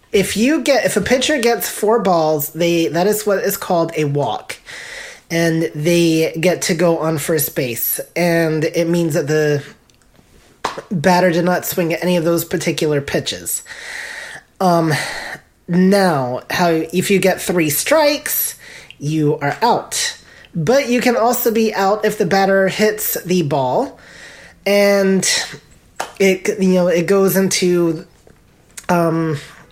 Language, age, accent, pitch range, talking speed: English, 20-39, American, 160-200 Hz, 145 wpm